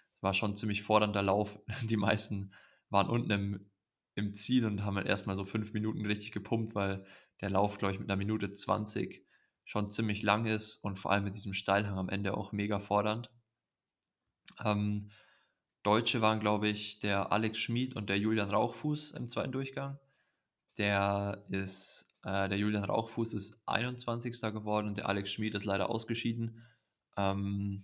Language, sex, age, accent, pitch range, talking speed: German, male, 20-39, German, 100-110 Hz, 170 wpm